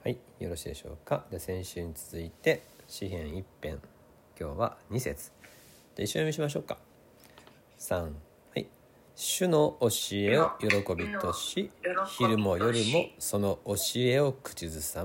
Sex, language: male, Japanese